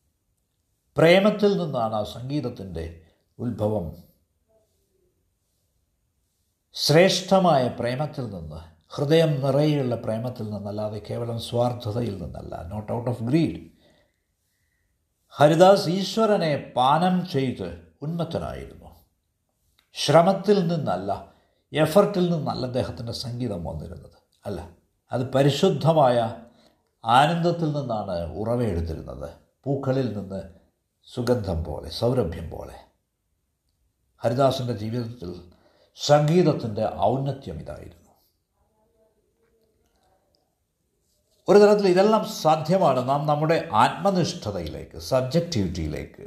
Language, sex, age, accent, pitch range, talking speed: Malayalam, male, 60-79, native, 85-140 Hz, 75 wpm